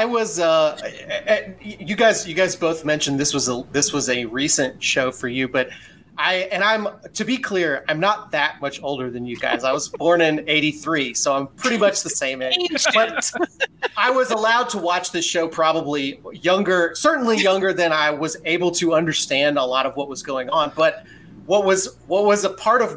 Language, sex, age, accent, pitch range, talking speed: English, male, 30-49, American, 140-195 Hz, 205 wpm